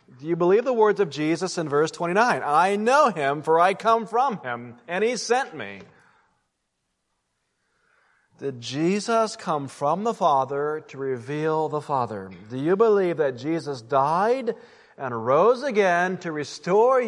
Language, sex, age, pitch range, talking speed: English, male, 40-59, 140-215 Hz, 150 wpm